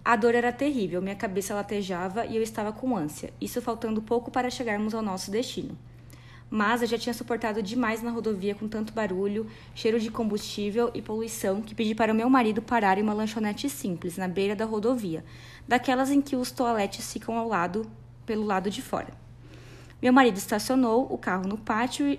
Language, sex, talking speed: Portuguese, female, 190 wpm